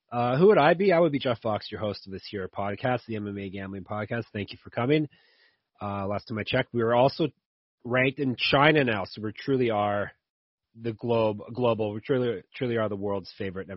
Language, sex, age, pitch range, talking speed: English, male, 30-49, 95-120 Hz, 220 wpm